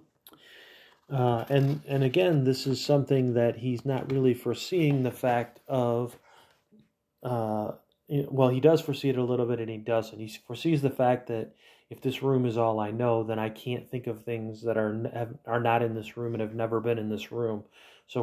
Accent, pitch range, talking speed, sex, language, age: American, 110-130 Hz, 200 wpm, male, English, 30-49